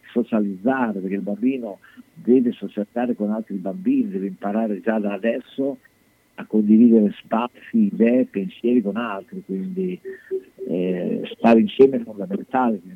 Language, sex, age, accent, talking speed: Italian, male, 50-69, native, 125 wpm